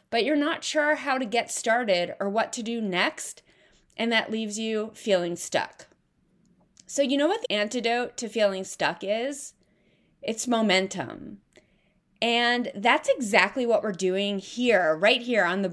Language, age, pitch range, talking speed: English, 20-39, 200-275 Hz, 160 wpm